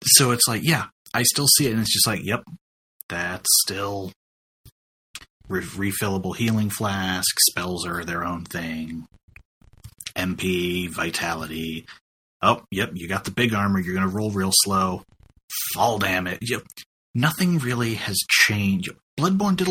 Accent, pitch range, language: American, 90-115 Hz, English